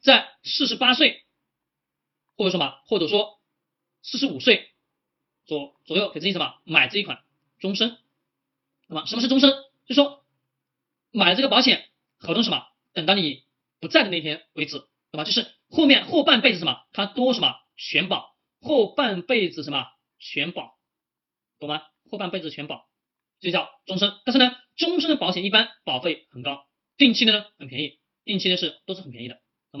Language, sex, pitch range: Chinese, male, 150-230 Hz